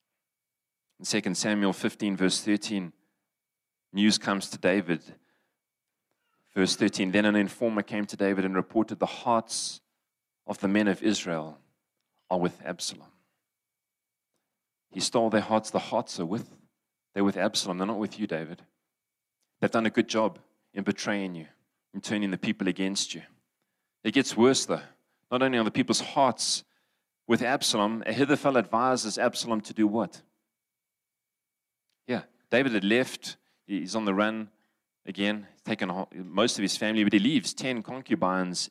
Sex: male